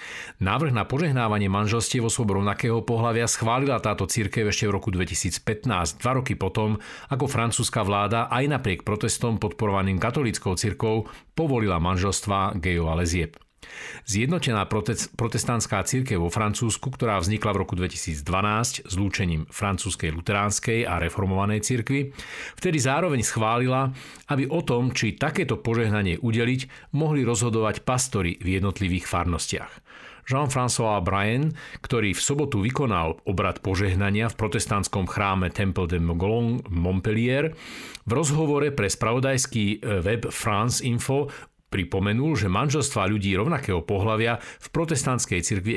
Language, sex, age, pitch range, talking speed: Slovak, male, 50-69, 100-130 Hz, 125 wpm